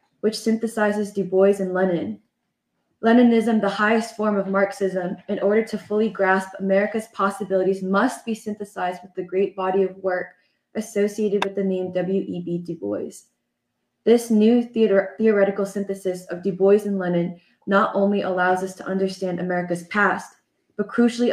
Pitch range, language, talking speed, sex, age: 185-210 Hz, English, 150 wpm, female, 20-39